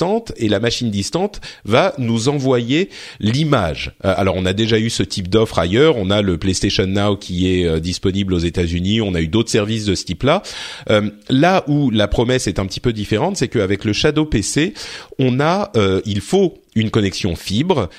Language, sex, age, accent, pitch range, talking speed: French, male, 30-49, French, 95-130 Hz, 200 wpm